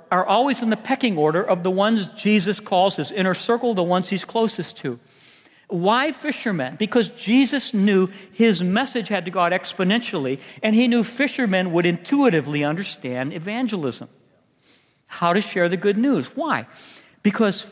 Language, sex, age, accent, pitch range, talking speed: English, male, 60-79, American, 165-225 Hz, 160 wpm